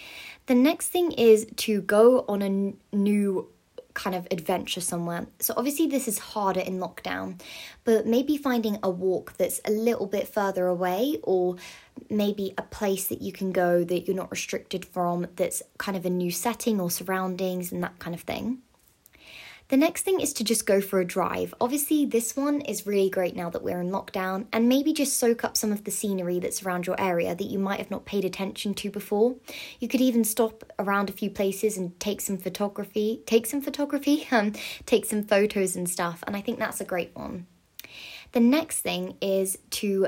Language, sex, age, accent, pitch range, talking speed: English, female, 20-39, British, 185-230 Hz, 200 wpm